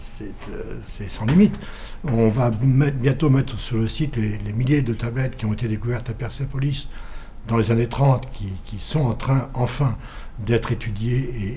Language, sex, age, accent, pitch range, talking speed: French, male, 60-79, French, 110-135 Hz, 180 wpm